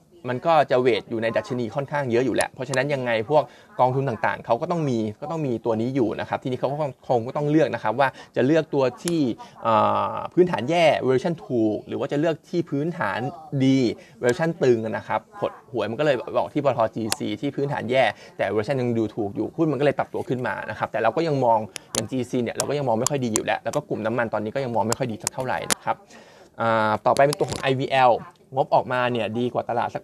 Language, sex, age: Thai, male, 20-39